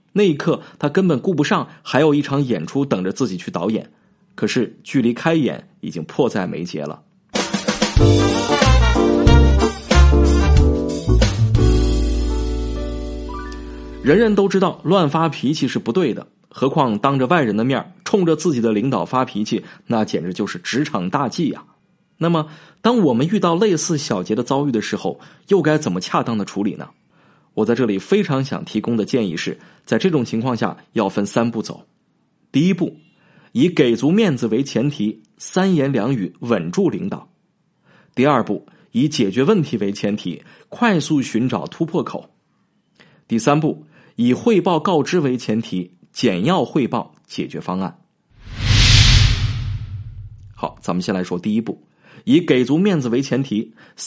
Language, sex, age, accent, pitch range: Chinese, male, 20-39, native, 105-160 Hz